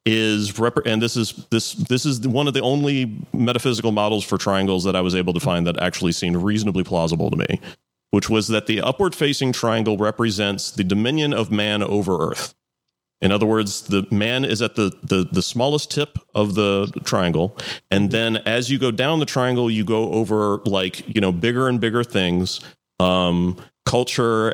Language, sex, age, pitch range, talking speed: English, male, 30-49, 100-125 Hz, 190 wpm